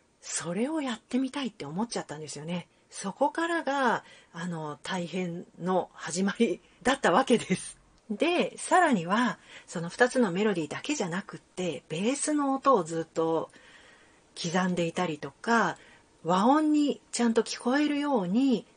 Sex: female